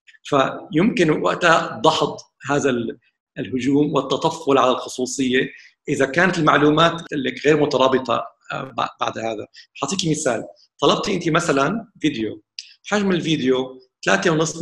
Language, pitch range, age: Arabic, 135-170 Hz, 50-69